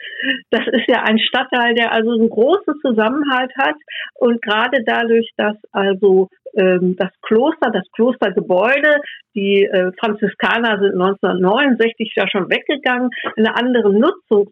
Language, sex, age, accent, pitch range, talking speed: German, female, 60-79, German, 200-245 Hz, 130 wpm